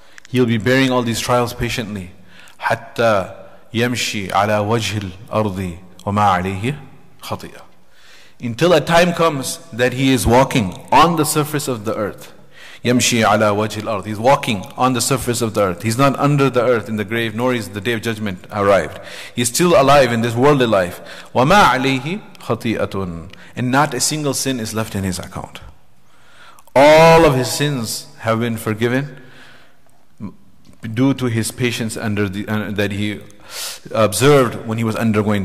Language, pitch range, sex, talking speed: English, 105-130 Hz, male, 160 wpm